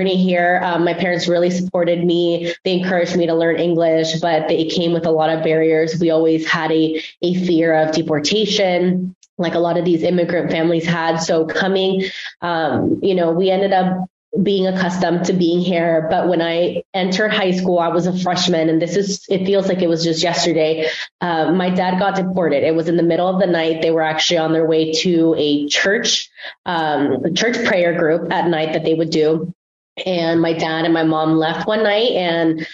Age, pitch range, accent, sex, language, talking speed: 20-39, 160-180 Hz, American, female, English, 205 wpm